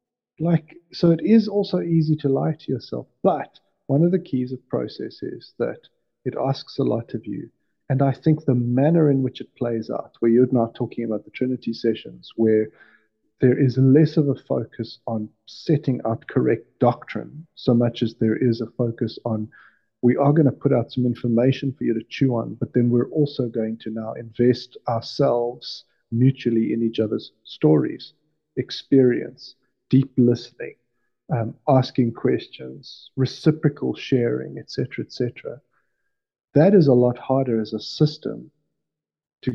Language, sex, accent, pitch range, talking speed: English, male, South African, 115-140 Hz, 165 wpm